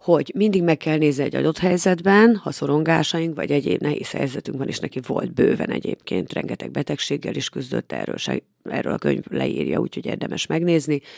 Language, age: Hungarian, 40-59